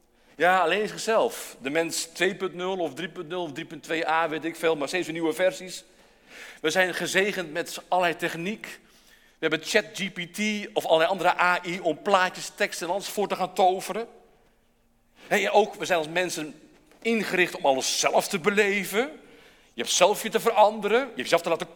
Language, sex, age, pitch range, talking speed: Dutch, male, 50-69, 150-190 Hz, 170 wpm